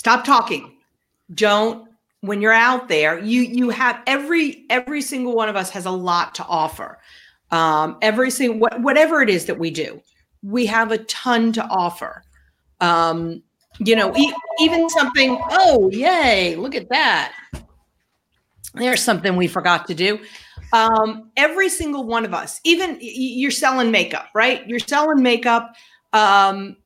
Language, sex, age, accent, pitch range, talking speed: English, female, 40-59, American, 210-275 Hz, 150 wpm